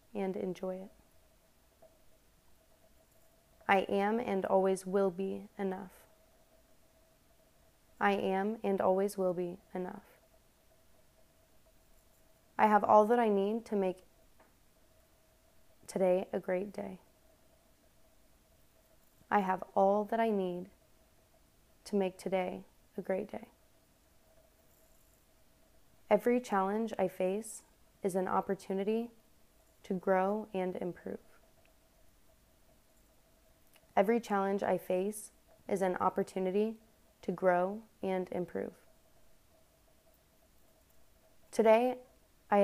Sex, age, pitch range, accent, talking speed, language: female, 20-39, 190-210 Hz, American, 90 wpm, English